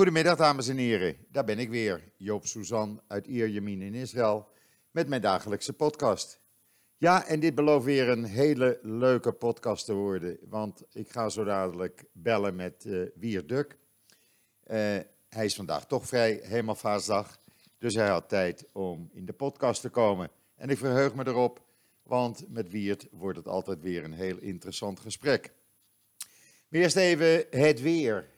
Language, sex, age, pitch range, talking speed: Dutch, male, 50-69, 100-125 Hz, 165 wpm